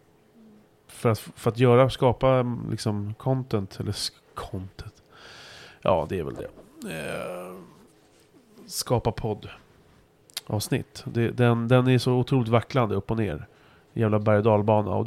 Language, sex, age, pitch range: Swedish, male, 30-49, 100-130 Hz